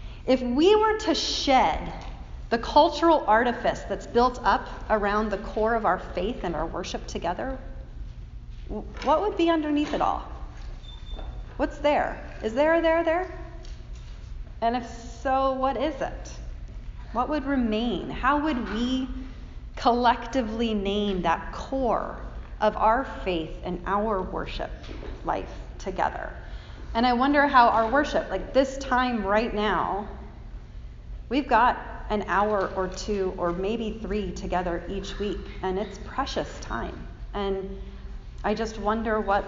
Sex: female